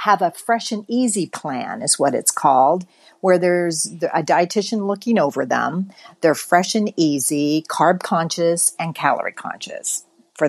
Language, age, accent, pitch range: English, 50-69, American, 155-220 Hz